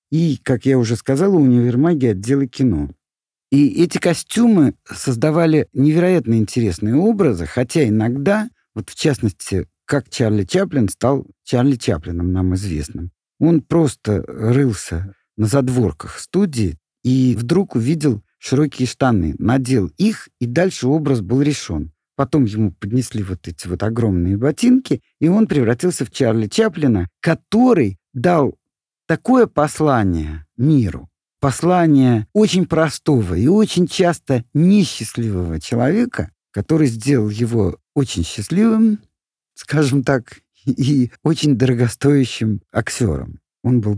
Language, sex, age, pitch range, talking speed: Russian, male, 50-69, 105-155 Hz, 115 wpm